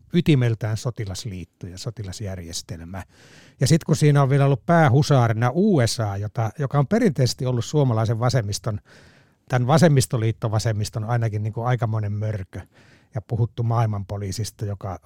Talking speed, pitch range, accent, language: 125 wpm, 110-140 Hz, native, Finnish